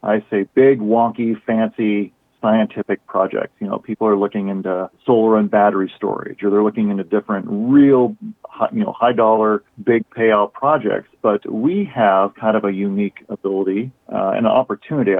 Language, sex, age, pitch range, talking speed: English, male, 40-59, 105-130 Hz, 160 wpm